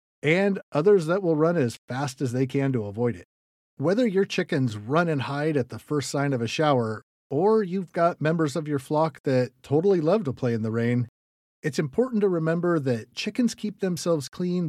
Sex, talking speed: male, 205 wpm